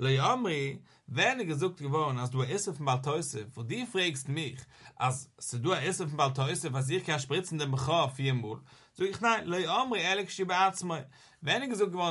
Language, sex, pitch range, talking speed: English, male, 135-195 Hz, 170 wpm